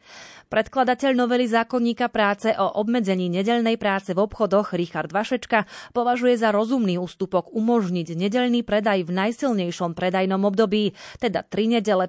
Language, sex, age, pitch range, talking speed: Slovak, female, 30-49, 185-225 Hz, 130 wpm